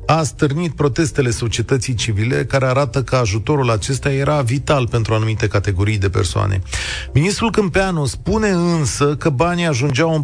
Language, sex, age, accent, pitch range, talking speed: Romanian, male, 40-59, native, 105-150 Hz, 145 wpm